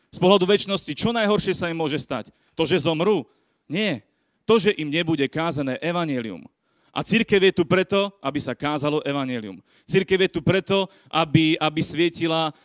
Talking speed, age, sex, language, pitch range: 165 wpm, 30-49, male, Slovak, 145-175 Hz